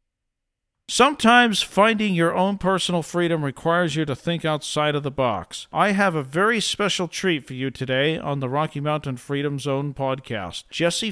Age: 50-69